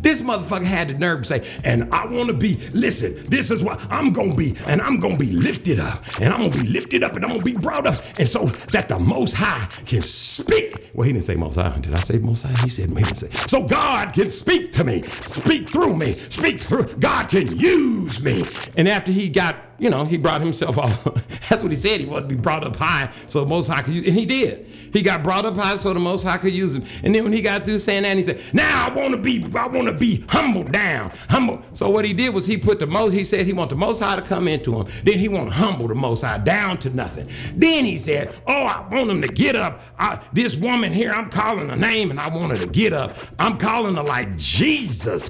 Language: English